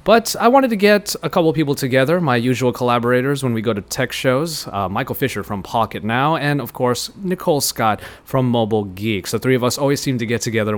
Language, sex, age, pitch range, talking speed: English, male, 30-49, 110-145 Hz, 240 wpm